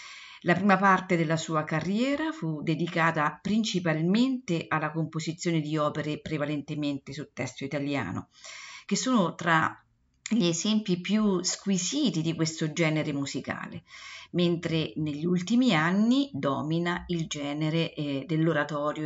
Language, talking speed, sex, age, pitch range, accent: Italian, 115 wpm, female, 50-69, 150-190 Hz, native